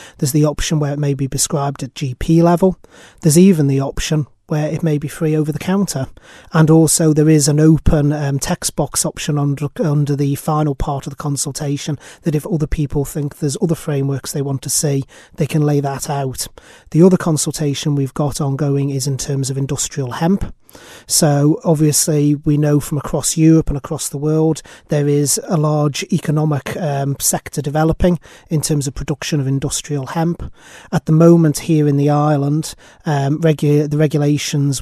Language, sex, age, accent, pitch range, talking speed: English, male, 30-49, British, 140-155 Hz, 185 wpm